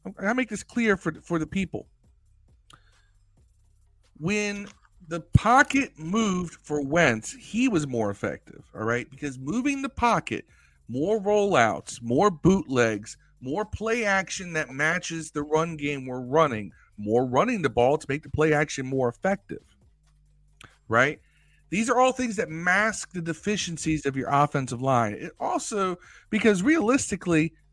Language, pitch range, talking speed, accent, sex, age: English, 115-195 Hz, 145 wpm, American, male, 50-69